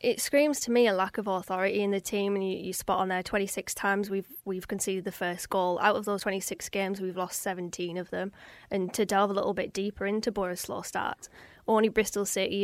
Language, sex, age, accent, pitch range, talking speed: English, female, 20-39, British, 190-215 Hz, 235 wpm